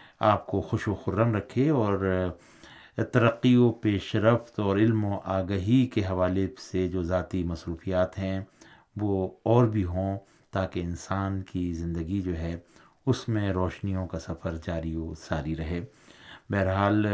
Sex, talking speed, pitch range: male, 145 wpm, 95-115 Hz